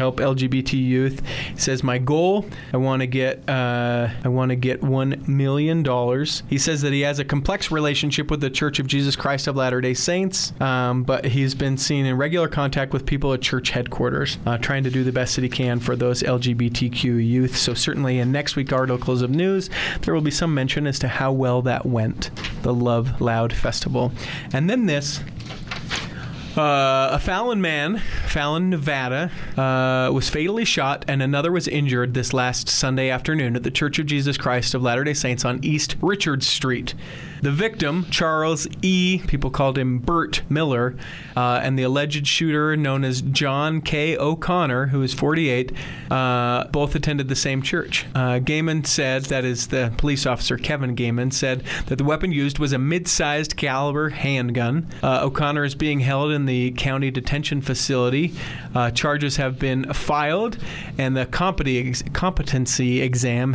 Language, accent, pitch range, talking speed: English, American, 125-150 Hz, 175 wpm